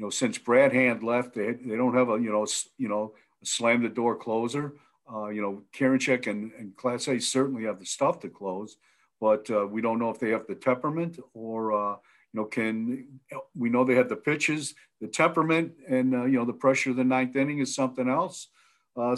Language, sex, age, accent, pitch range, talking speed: English, male, 50-69, American, 120-150 Hz, 220 wpm